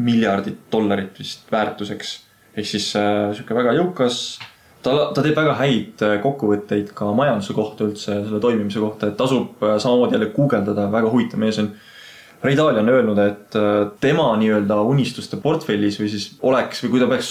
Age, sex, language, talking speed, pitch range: 20-39, male, English, 160 wpm, 100-130 Hz